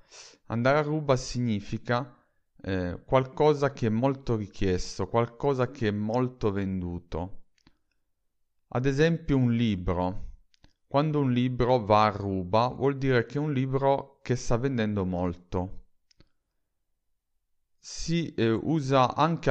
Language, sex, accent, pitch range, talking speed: Italian, male, native, 100-135 Hz, 120 wpm